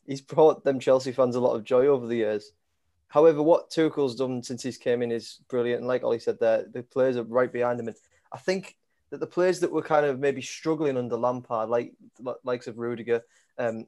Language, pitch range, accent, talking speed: English, 120-155 Hz, British, 230 wpm